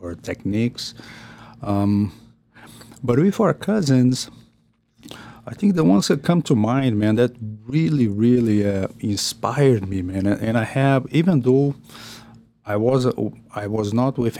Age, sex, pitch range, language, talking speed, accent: 50-69, male, 105-125 Hz, English, 140 wpm, Brazilian